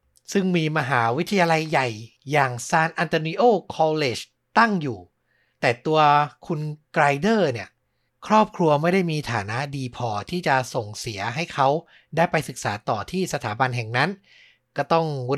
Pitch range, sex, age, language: 135-180 Hz, male, 60-79, Thai